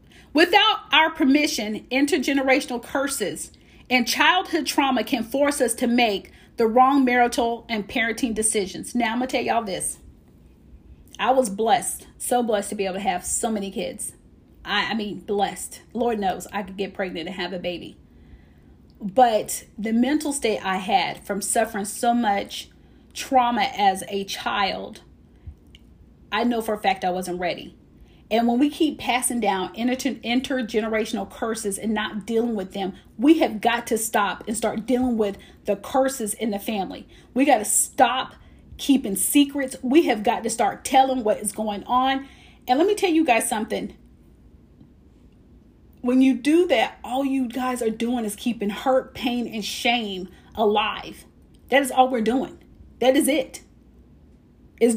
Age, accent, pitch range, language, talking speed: 30-49, American, 205-260 Hz, English, 165 wpm